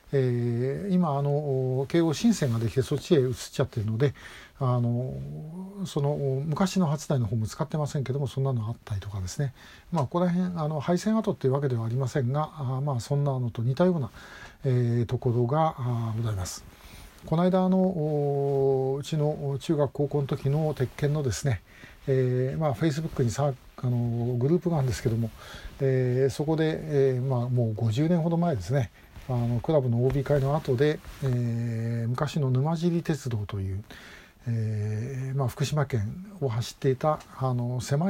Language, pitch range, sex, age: Japanese, 120-150 Hz, male, 50-69